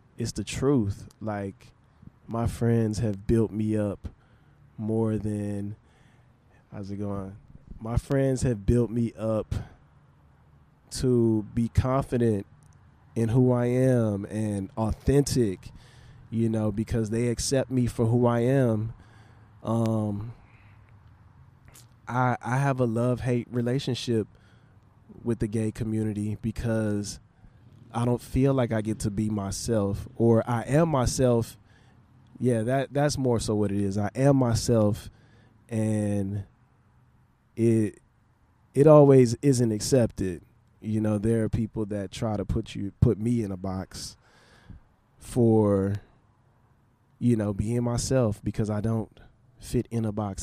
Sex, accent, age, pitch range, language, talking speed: male, American, 20-39, 105-120 Hz, English, 130 wpm